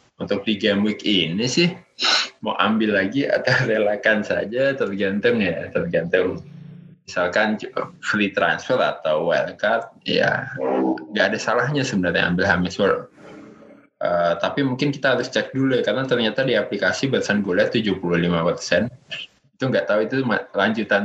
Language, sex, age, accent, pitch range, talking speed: Indonesian, male, 20-39, native, 90-125 Hz, 130 wpm